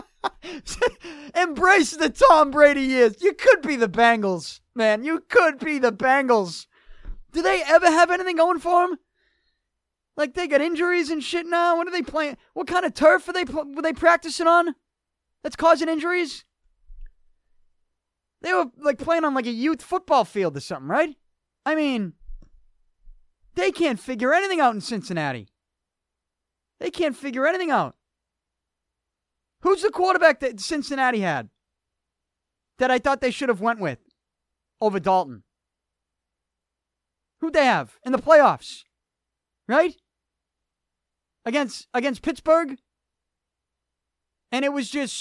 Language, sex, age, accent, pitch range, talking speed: English, male, 20-39, American, 205-325 Hz, 140 wpm